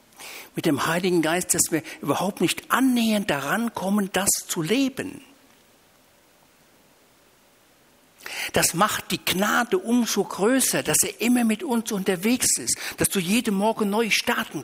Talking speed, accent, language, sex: 135 wpm, German, German, male